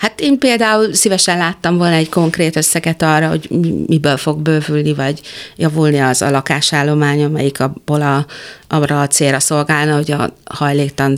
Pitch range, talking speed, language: 140-170 Hz, 140 wpm, Hungarian